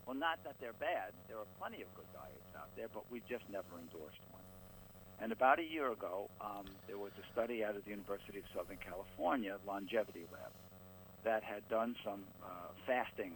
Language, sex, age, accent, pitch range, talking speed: English, male, 60-79, American, 95-110 Hz, 200 wpm